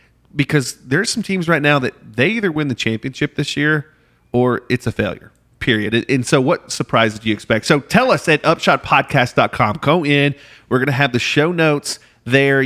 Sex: male